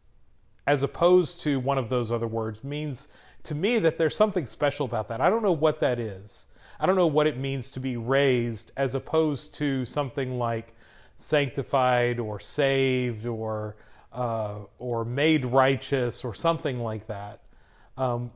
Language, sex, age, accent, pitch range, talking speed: English, male, 40-59, American, 120-145 Hz, 165 wpm